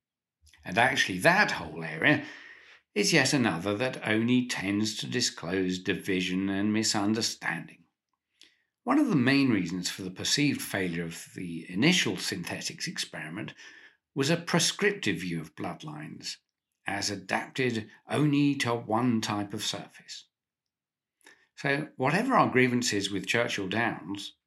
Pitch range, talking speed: 95-125 Hz, 125 wpm